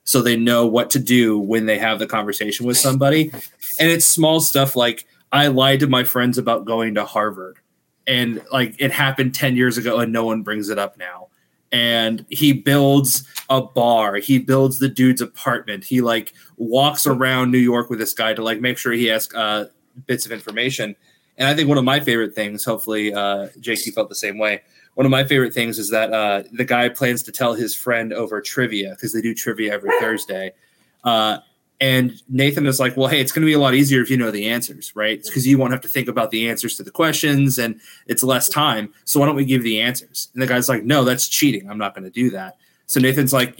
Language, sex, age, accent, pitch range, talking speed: English, male, 20-39, American, 115-140 Hz, 230 wpm